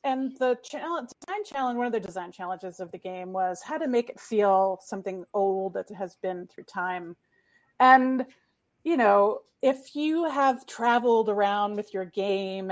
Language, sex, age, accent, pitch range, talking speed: English, female, 30-49, American, 190-225 Hz, 170 wpm